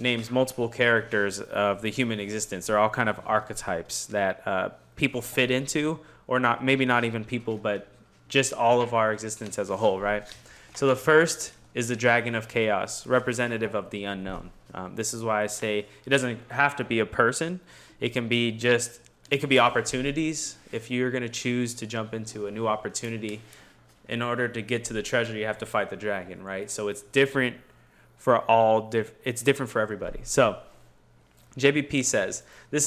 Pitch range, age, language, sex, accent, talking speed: 105-125 Hz, 20-39, English, male, American, 190 wpm